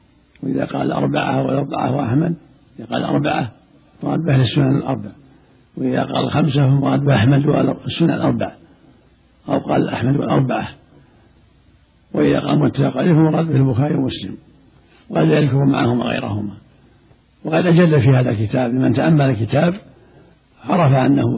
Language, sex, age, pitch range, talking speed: Arabic, male, 60-79, 115-140 Hz, 125 wpm